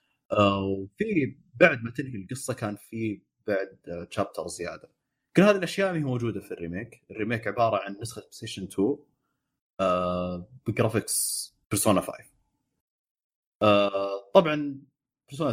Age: 30-49